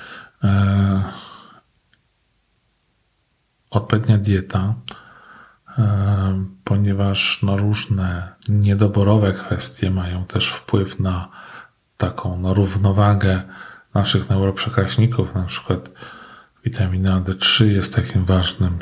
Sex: male